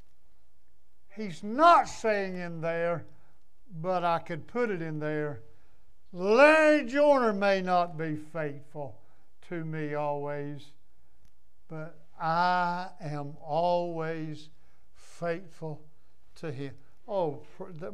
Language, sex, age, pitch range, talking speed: English, male, 60-79, 135-170 Hz, 95 wpm